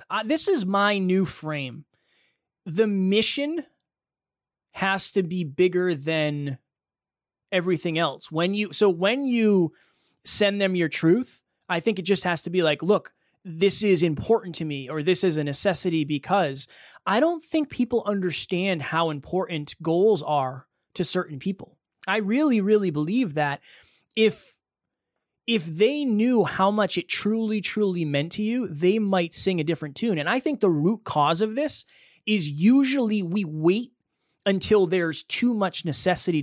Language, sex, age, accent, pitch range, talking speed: English, male, 20-39, American, 160-210 Hz, 160 wpm